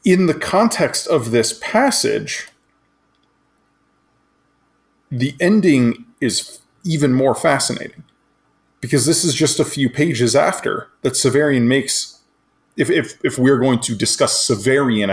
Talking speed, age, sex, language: 125 wpm, 20-39, male, English